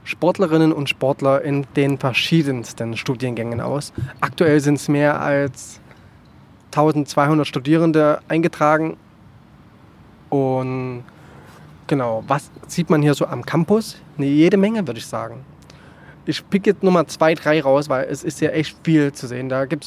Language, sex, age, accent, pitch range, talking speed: German, male, 20-39, German, 135-165 Hz, 140 wpm